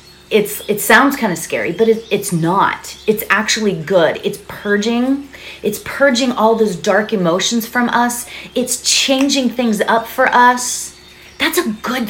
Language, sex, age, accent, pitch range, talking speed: English, female, 30-49, American, 150-225 Hz, 155 wpm